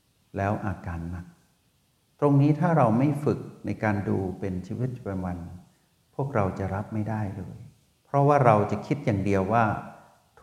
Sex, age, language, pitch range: male, 60-79, Thai, 100-130 Hz